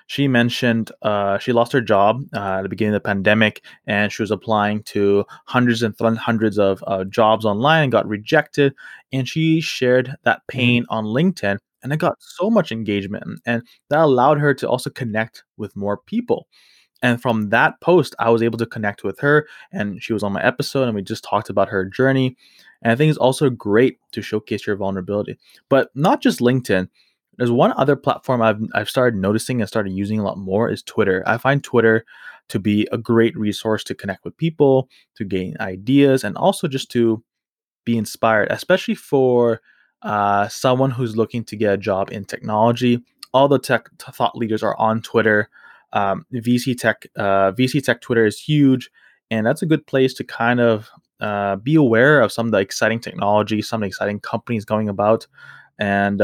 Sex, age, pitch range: male, 20-39, 105-130 Hz